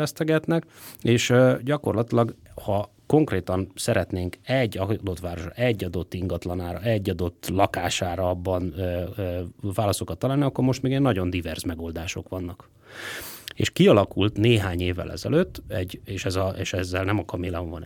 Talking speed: 145 wpm